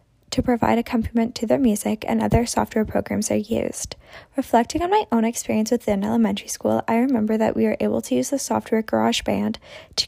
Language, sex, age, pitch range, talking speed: English, female, 10-29, 215-240 Hz, 190 wpm